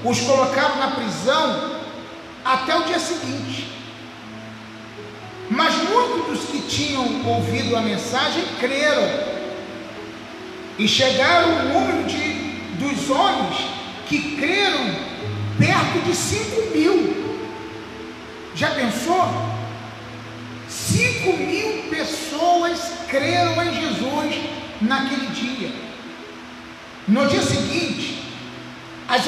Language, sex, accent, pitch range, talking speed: Portuguese, male, Brazilian, 215-310 Hz, 90 wpm